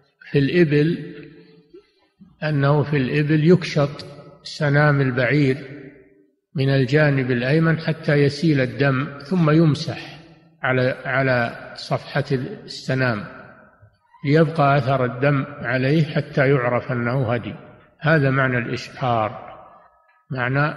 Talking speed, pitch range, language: 90 wpm, 130-155 Hz, Arabic